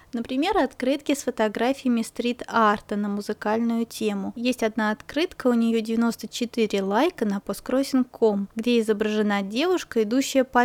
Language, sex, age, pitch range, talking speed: Russian, female, 20-39, 220-260 Hz, 125 wpm